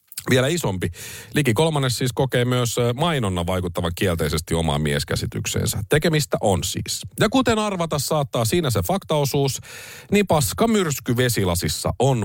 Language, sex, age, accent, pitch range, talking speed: Finnish, male, 50-69, native, 95-130 Hz, 130 wpm